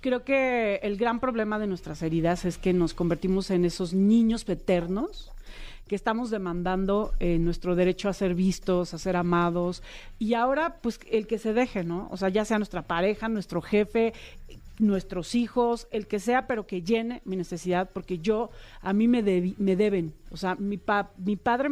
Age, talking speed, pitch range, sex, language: 40-59, 190 wpm, 185-230 Hz, female, Spanish